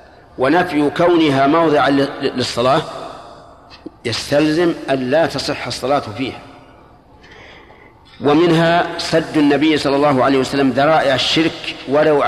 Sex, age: male, 50-69